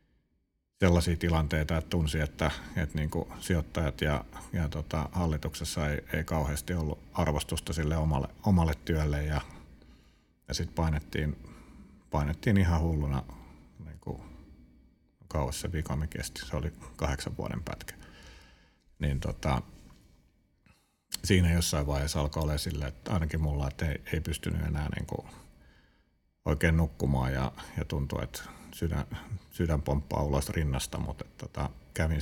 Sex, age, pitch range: male, 50-69, 70-85 Hz